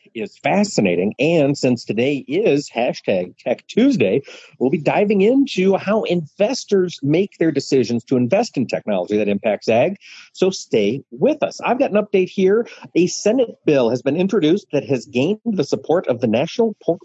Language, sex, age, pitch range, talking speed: English, male, 50-69, 135-200 Hz, 175 wpm